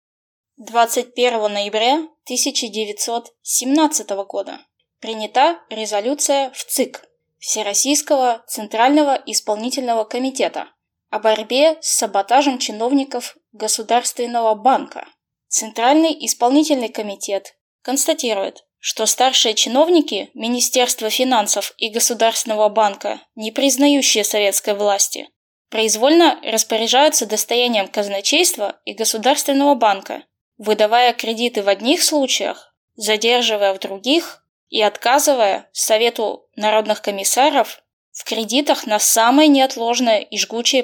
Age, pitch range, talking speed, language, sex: 10-29, 215-265 Hz, 90 wpm, Russian, female